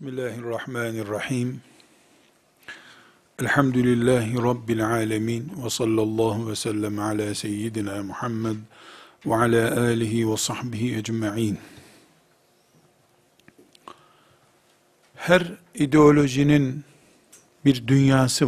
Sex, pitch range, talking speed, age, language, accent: male, 115-150 Hz, 70 wpm, 50-69, Turkish, native